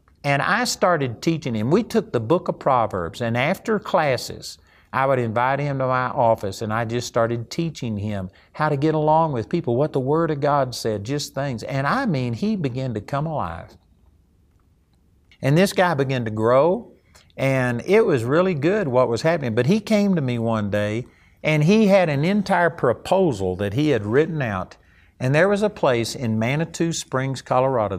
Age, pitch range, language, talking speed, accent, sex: 50-69, 110-150 Hz, English, 195 wpm, American, male